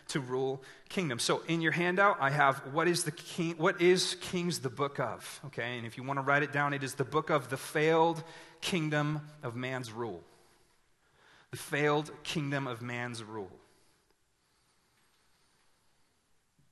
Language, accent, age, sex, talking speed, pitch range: English, American, 30-49, male, 160 wpm, 120-160 Hz